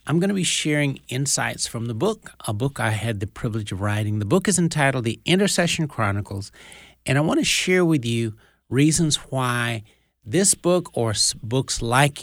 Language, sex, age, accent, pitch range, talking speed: English, male, 60-79, American, 110-140 Hz, 185 wpm